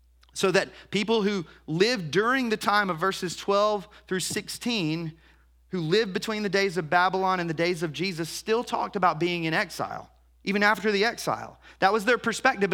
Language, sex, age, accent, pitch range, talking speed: English, male, 30-49, American, 160-205 Hz, 185 wpm